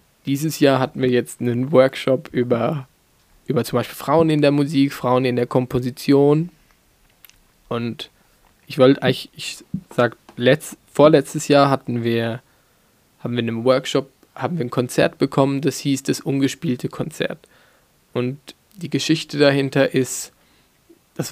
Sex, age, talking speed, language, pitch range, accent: male, 20-39, 145 wpm, German, 120-140 Hz, German